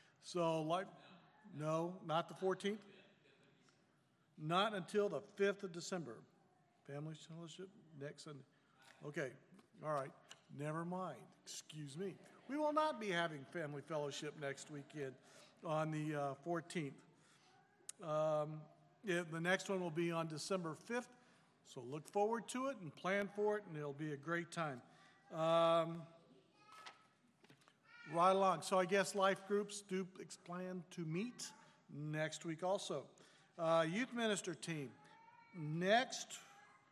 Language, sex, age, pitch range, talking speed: English, male, 60-79, 160-195 Hz, 130 wpm